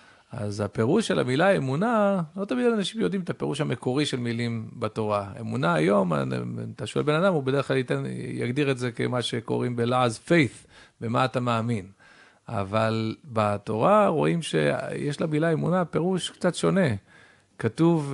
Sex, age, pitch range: male, 40-59, 110-135 Hz